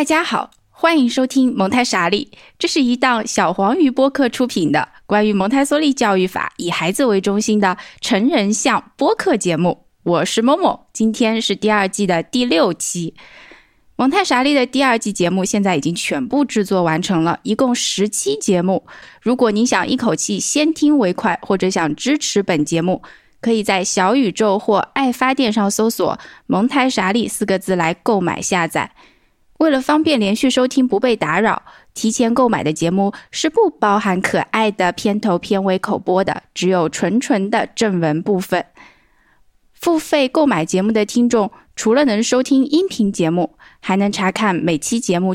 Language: Chinese